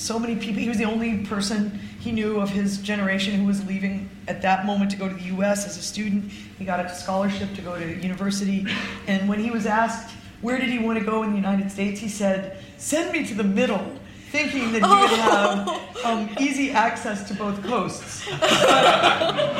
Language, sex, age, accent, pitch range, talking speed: English, female, 40-59, American, 195-240 Hz, 210 wpm